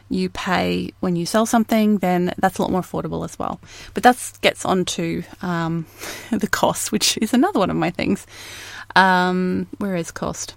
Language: English